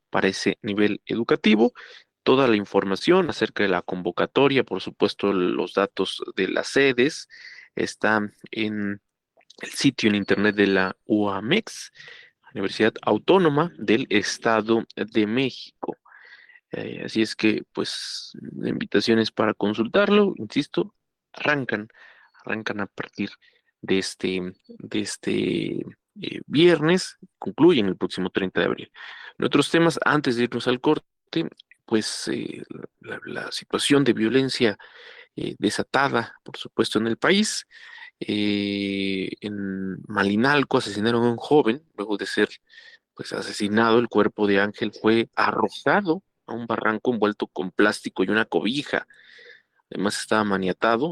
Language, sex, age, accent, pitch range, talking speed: Spanish, male, 30-49, Mexican, 100-150 Hz, 130 wpm